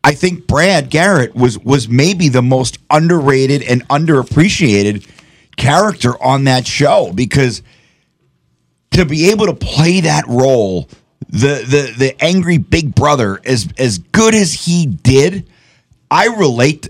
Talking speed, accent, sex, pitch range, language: 135 wpm, American, male, 110-145 Hz, English